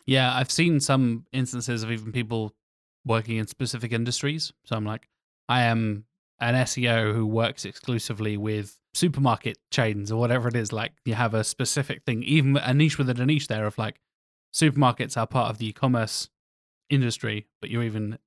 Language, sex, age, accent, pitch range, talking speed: English, male, 20-39, British, 110-130 Hz, 175 wpm